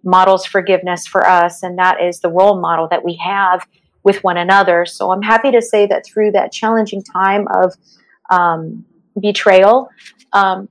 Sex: female